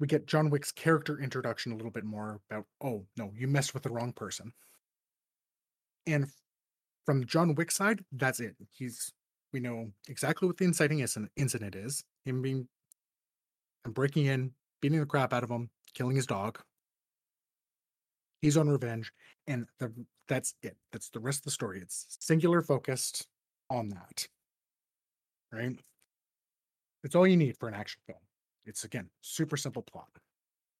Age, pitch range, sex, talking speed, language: 30-49, 120-155 Hz, male, 160 wpm, English